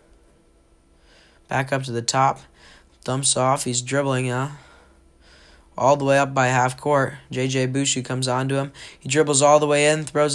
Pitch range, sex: 120-140 Hz, male